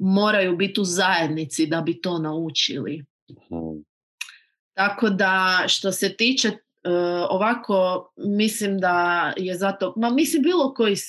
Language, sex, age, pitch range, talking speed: Croatian, female, 30-49, 165-200 Hz, 115 wpm